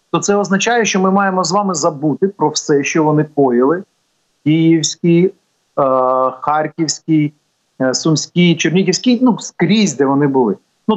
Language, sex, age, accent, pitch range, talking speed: Ukrainian, male, 40-59, native, 150-205 Hz, 140 wpm